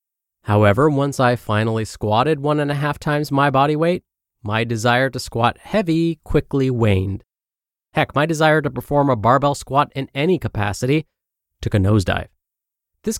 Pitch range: 105-150 Hz